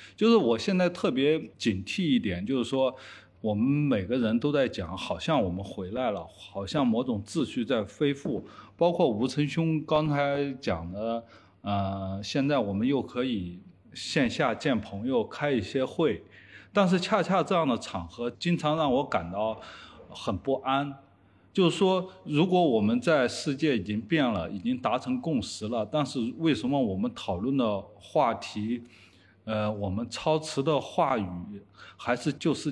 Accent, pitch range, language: native, 100-155 Hz, Chinese